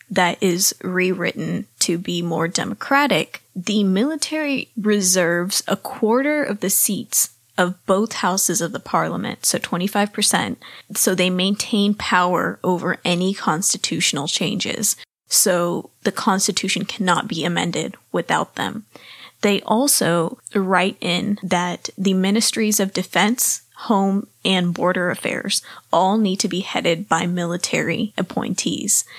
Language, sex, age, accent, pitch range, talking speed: English, female, 20-39, American, 180-210 Hz, 125 wpm